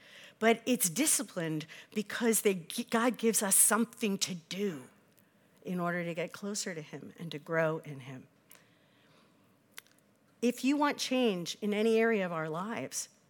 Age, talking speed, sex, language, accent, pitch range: 50-69, 150 wpm, female, English, American, 185-245 Hz